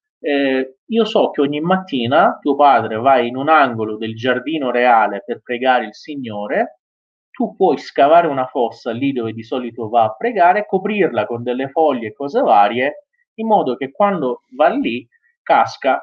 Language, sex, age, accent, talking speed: Italian, male, 30-49, native, 170 wpm